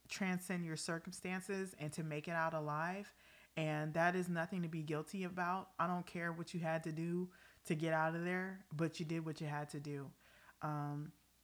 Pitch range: 155-190 Hz